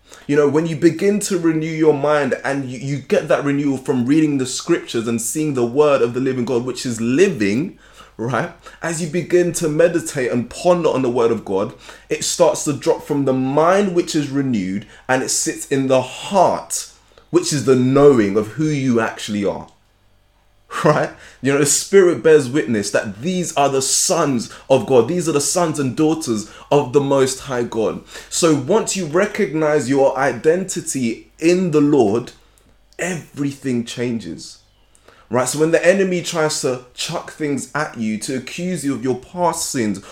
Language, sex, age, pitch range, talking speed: English, male, 20-39, 115-155 Hz, 180 wpm